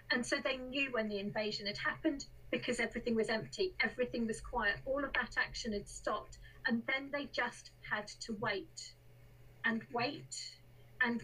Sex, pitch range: female, 220-260 Hz